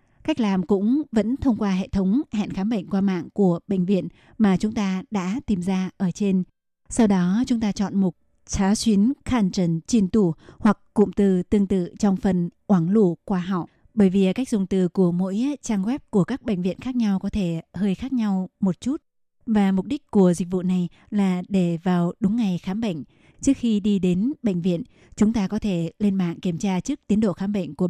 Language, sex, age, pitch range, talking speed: Vietnamese, female, 20-39, 185-220 Hz, 220 wpm